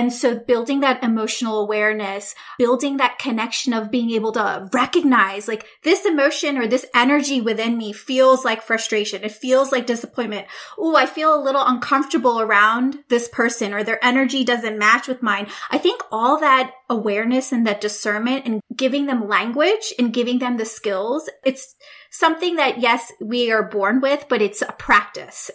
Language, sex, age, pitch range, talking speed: English, female, 20-39, 225-285 Hz, 175 wpm